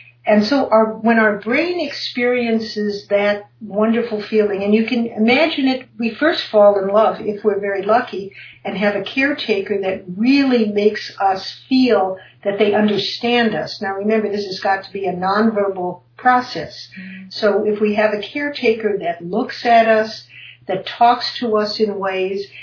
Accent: American